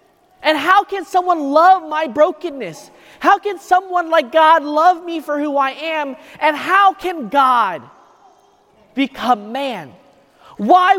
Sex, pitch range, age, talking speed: male, 260-340 Hz, 30-49, 135 wpm